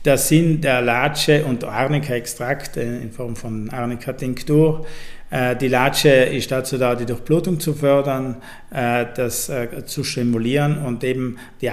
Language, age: German, 50-69